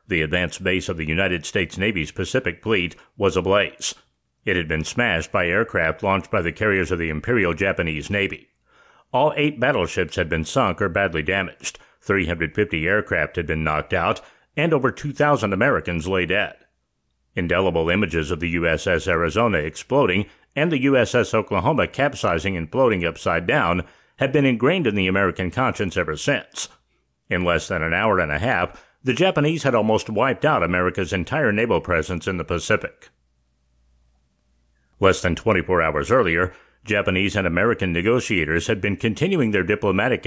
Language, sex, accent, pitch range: English, male, American, 85-110 Hz